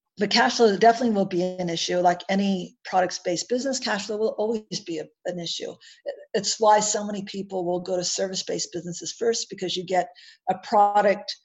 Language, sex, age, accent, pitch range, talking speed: English, female, 50-69, American, 180-230 Hz, 185 wpm